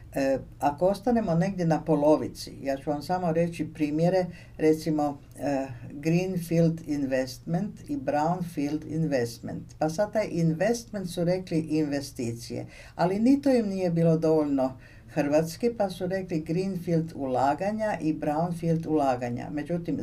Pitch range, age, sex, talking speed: 130-175 Hz, 50-69, female, 130 wpm